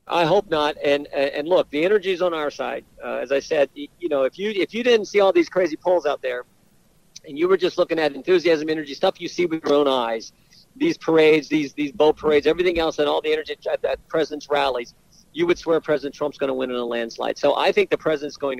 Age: 50-69